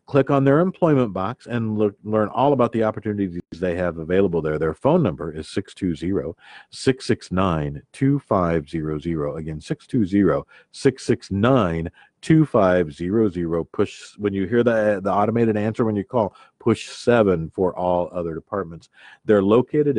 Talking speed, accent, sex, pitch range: 125 wpm, American, male, 90-130 Hz